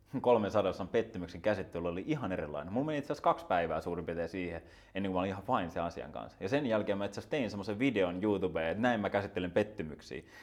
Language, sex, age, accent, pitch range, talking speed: Finnish, male, 20-39, native, 85-110 Hz, 200 wpm